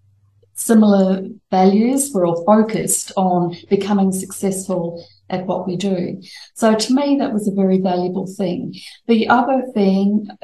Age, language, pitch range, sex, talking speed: 50-69, English, 180-210 Hz, female, 140 wpm